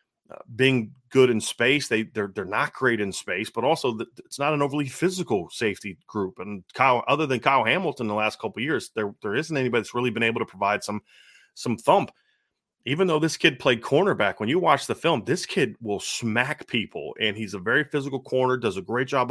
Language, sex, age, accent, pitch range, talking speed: English, male, 30-49, American, 110-135 Hz, 220 wpm